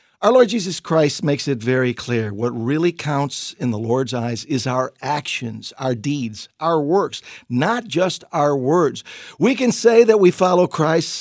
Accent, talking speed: American, 175 wpm